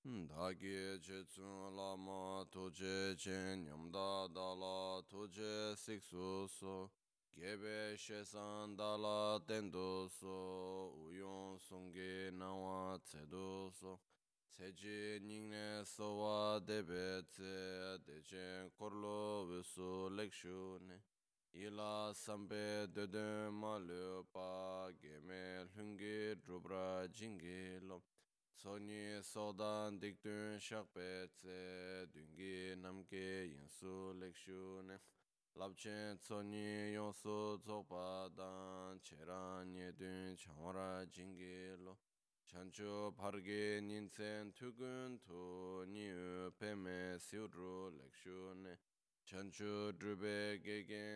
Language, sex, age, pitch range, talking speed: Italian, male, 20-39, 95-105 Hz, 70 wpm